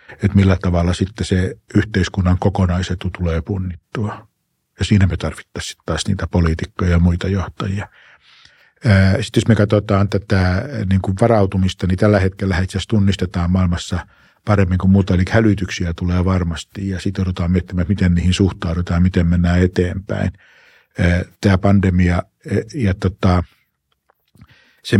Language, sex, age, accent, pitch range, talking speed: Finnish, male, 50-69, native, 85-100 Hz, 130 wpm